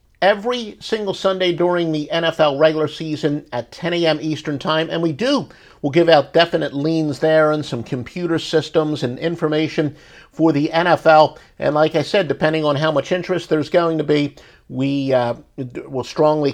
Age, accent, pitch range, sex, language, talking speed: 50-69, American, 135-185 Hz, male, English, 175 wpm